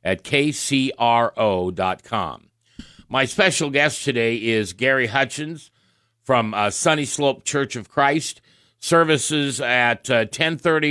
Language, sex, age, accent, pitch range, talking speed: English, male, 50-69, American, 115-145 Hz, 110 wpm